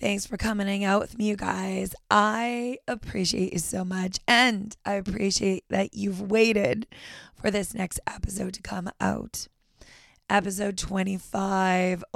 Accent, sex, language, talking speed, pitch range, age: American, female, English, 140 wpm, 195-230 Hz, 20-39